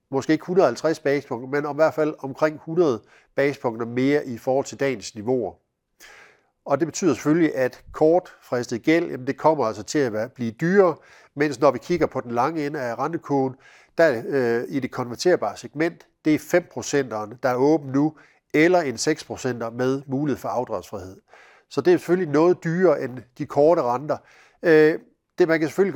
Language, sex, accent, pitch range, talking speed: Danish, male, native, 125-155 Hz, 175 wpm